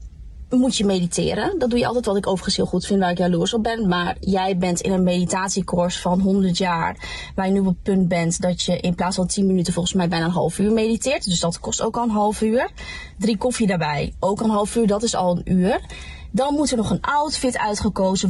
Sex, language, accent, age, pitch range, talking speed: female, Dutch, Dutch, 20-39, 180-230 Hz, 245 wpm